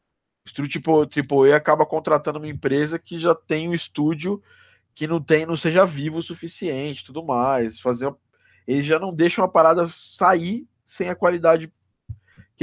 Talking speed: 160 wpm